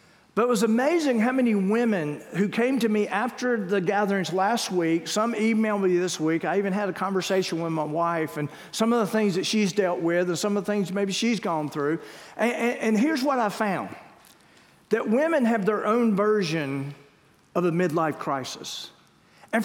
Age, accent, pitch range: 50-69, American, 180-240 Hz